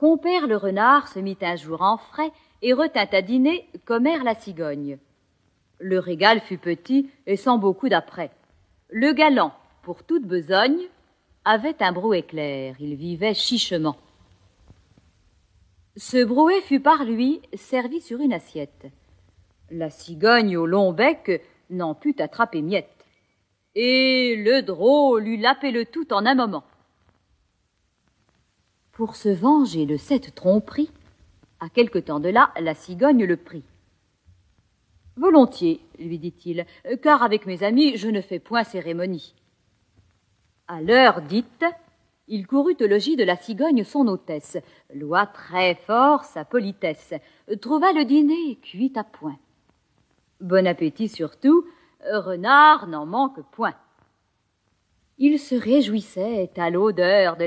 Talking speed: 135 wpm